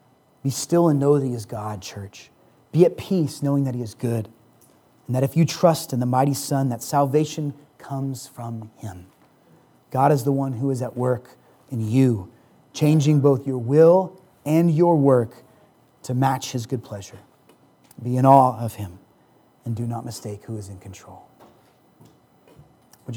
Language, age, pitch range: English, 30-49, 120-145 Hz